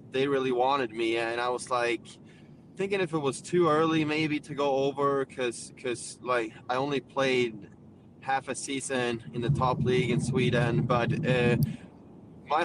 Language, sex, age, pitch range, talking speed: English, male, 20-39, 125-140 Hz, 170 wpm